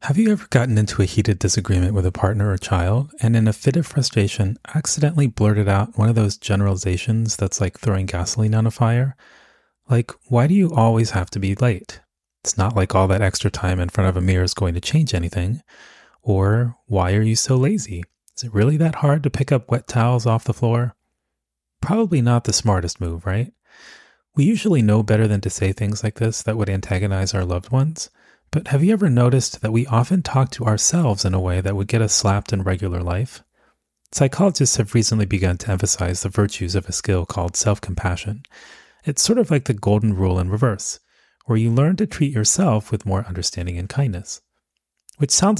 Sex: male